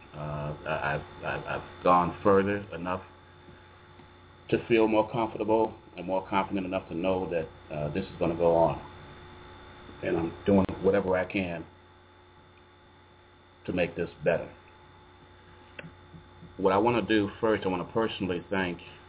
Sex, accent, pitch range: male, American, 85-95 Hz